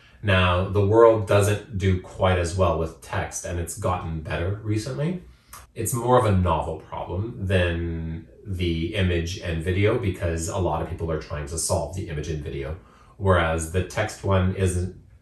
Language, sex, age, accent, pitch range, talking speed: English, male, 30-49, American, 85-100 Hz, 175 wpm